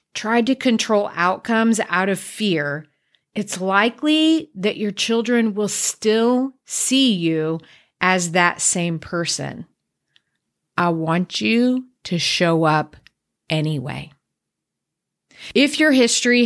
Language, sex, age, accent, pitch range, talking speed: English, female, 40-59, American, 175-230 Hz, 110 wpm